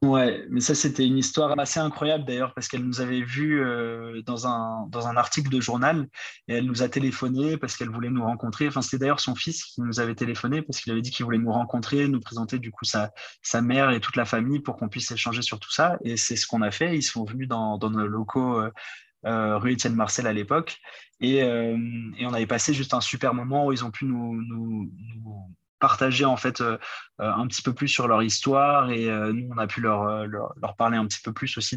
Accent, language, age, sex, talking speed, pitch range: French, French, 20-39, male, 245 wpm, 110-130 Hz